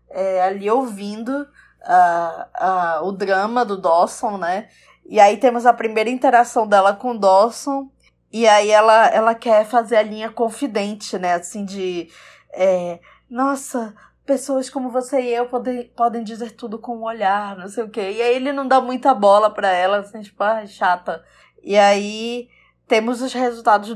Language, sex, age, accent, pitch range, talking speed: Portuguese, female, 20-39, Brazilian, 205-265 Hz, 175 wpm